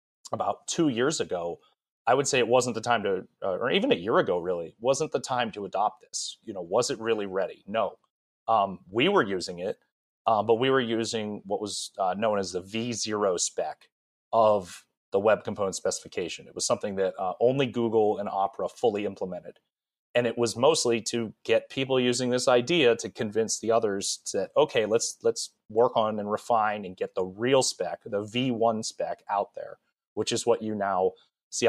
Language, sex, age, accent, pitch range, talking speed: English, male, 30-49, American, 105-130 Hz, 200 wpm